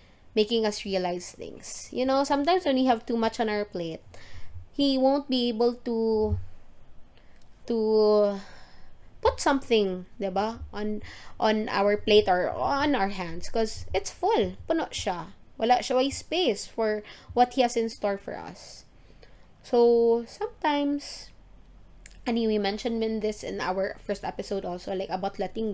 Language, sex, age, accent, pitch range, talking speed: English, female, 20-39, Filipino, 195-245 Hz, 145 wpm